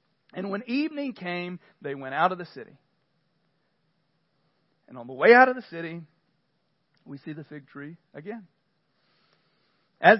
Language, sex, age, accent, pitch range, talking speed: English, male, 40-59, American, 165-255 Hz, 145 wpm